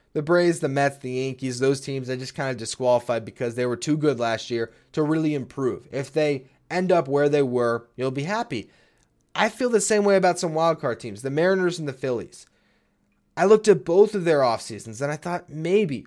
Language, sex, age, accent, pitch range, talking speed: English, male, 20-39, American, 125-160 Hz, 215 wpm